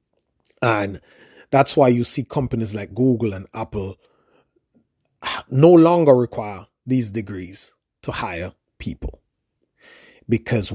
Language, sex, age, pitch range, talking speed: English, male, 30-49, 110-140 Hz, 105 wpm